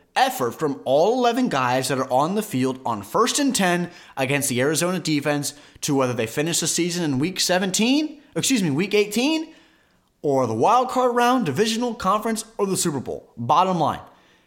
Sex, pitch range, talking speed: male, 135-205 Hz, 180 wpm